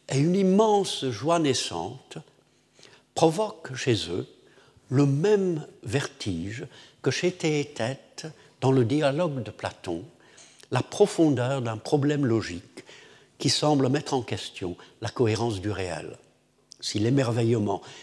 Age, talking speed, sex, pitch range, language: 60-79, 115 wpm, male, 110-150 Hz, French